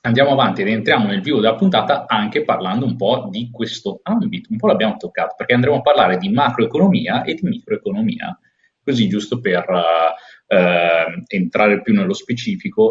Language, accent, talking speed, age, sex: Italian, native, 165 wpm, 30-49, male